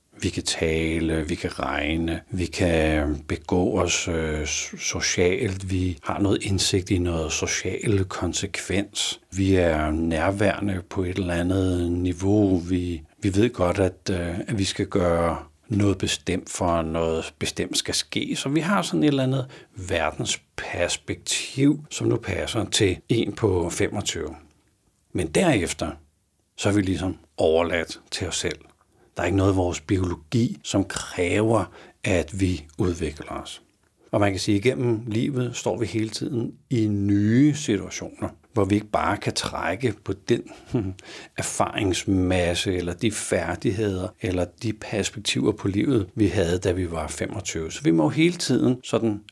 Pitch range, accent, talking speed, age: 85-105 Hz, native, 155 wpm, 60-79